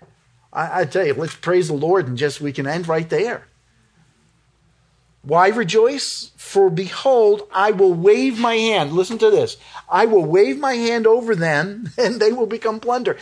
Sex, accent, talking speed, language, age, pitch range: male, American, 170 wpm, English, 50-69, 135-205 Hz